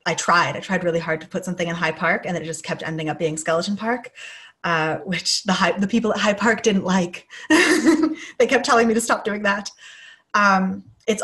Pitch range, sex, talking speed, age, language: 155-180 Hz, female, 225 wpm, 20-39, English